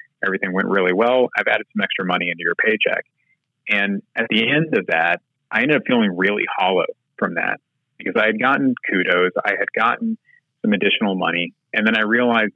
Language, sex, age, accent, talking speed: English, male, 30-49, American, 195 wpm